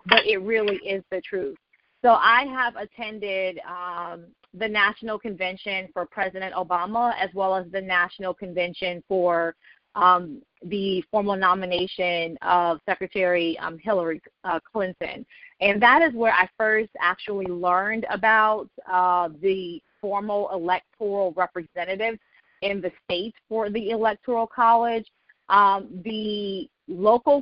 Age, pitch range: 30-49, 180-220 Hz